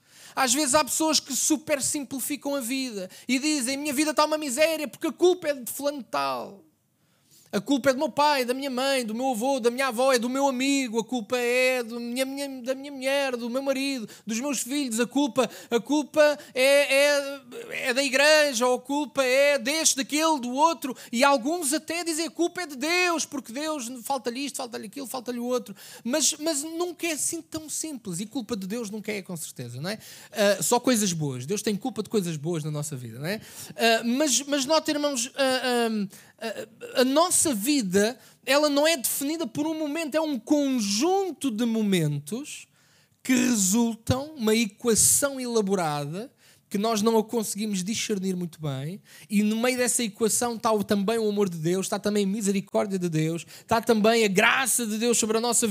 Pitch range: 215-285 Hz